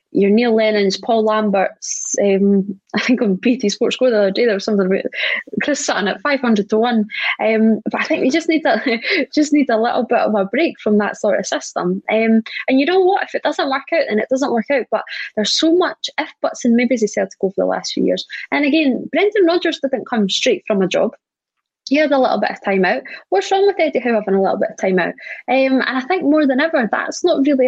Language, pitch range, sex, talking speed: English, 215-310 Hz, female, 255 wpm